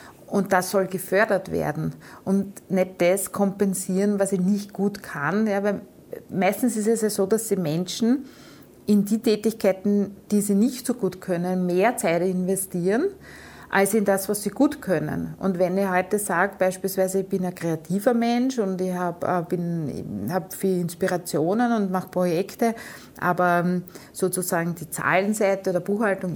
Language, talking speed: German, 155 wpm